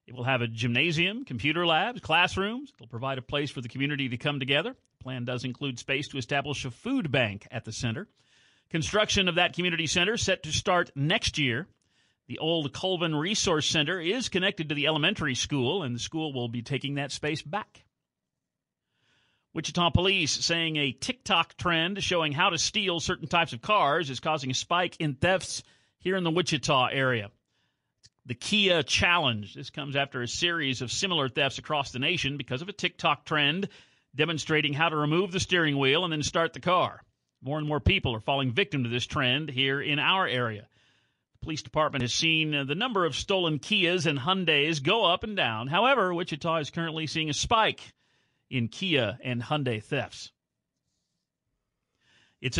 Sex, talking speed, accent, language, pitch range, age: male, 185 wpm, American, English, 130-175 Hz, 50-69